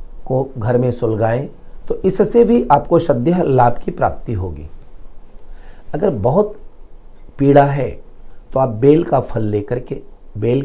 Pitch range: 110-145 Hz